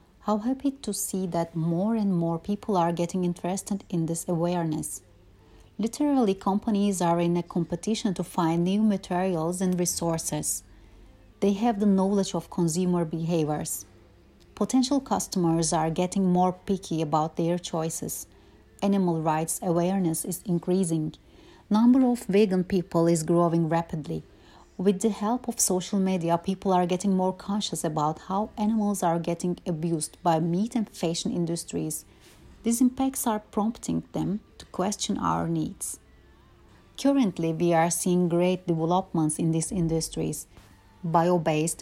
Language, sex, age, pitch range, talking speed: Turkish, female, 30-49, 160-195 Hz, 140 wpm